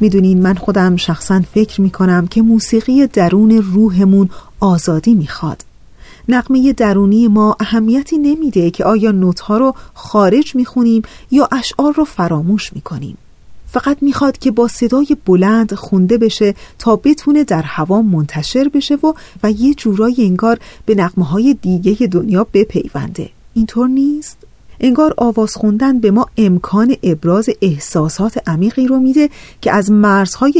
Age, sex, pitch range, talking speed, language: 40-59, female, 190-265 Hz, 145 wpm, Persian